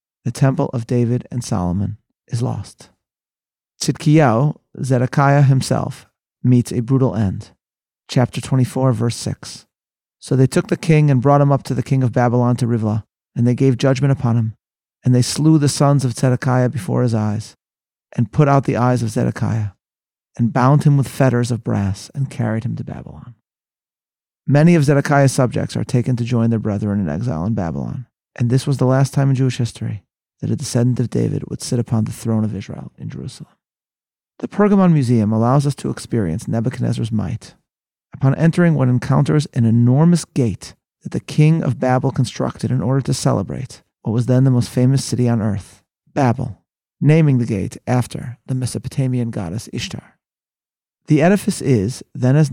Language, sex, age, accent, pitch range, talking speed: English, male, 30-49, American, 115-140 Hz, 180 wpm